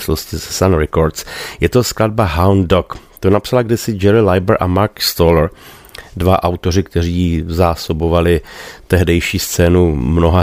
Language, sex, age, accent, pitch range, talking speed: Czech, male, 40-59, native, 85-105 Hz, 145 wpm